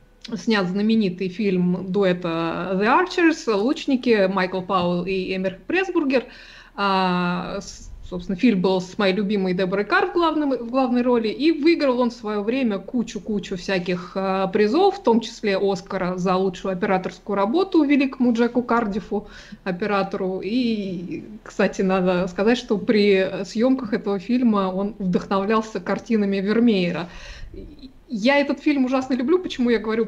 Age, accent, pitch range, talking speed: 20-39, native, 195-250 Hz, 130 wpm